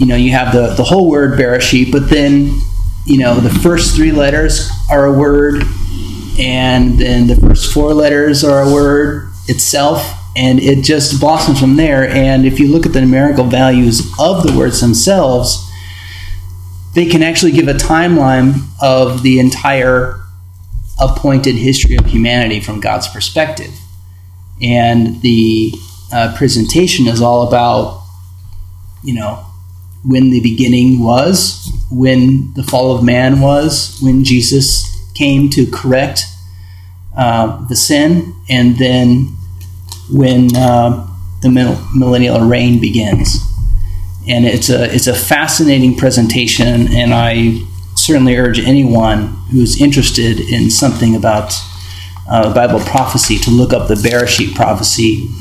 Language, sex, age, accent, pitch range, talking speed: English, male, 30-49, American, 100-135 Hz, 135 wpm